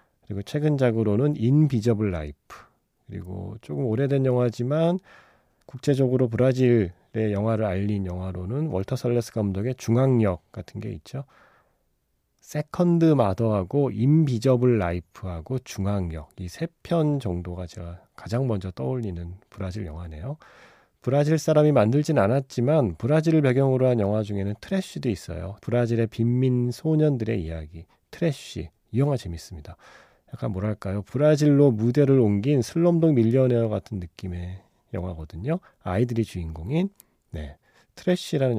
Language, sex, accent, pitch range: Korean, male, native, 95-140 Hz